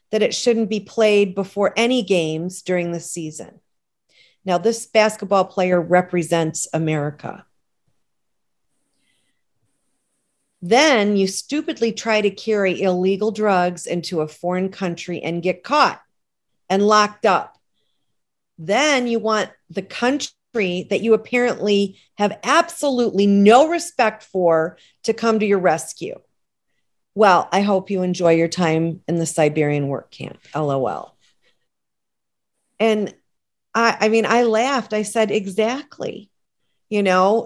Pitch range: 180-230 Hz